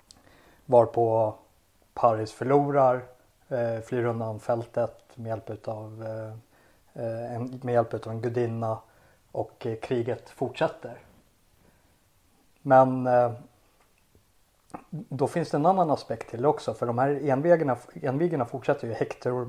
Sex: male